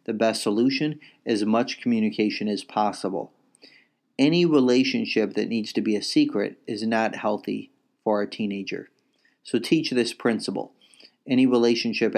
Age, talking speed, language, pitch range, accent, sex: 40-59, 140 wpm, English, 110-120 Hz, American, male